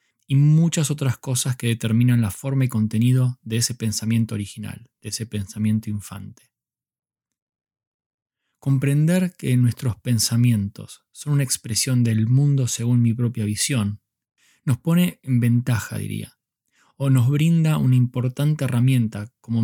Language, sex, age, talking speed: Spanish, male, 20-39, 130 wpm